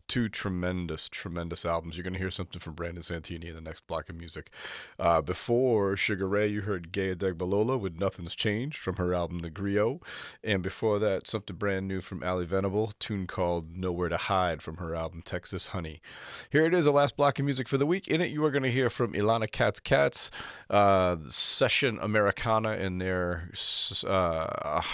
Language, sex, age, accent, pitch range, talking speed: English, male, 30-49, American, 90-110 Hz, 195 wpm